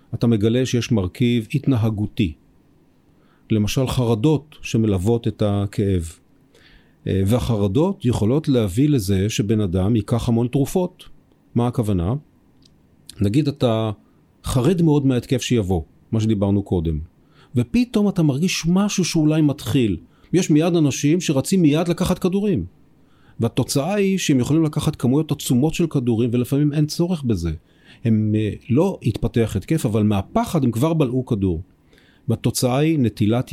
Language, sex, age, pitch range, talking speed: Hebrew, male, 40-59, 105-150 Hz, 125 wpm